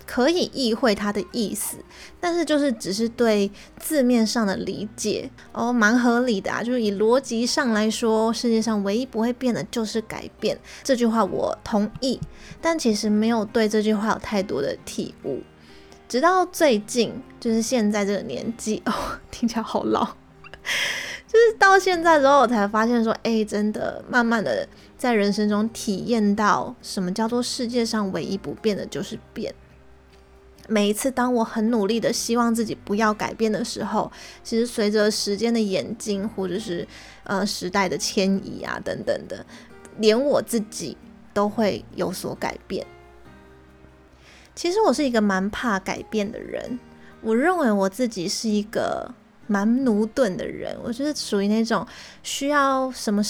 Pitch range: 205-245 Hz